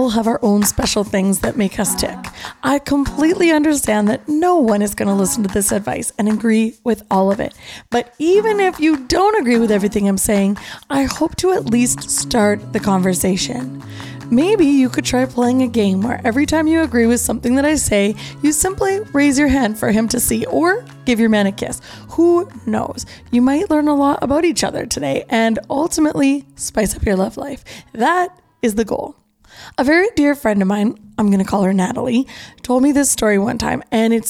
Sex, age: female, 20-39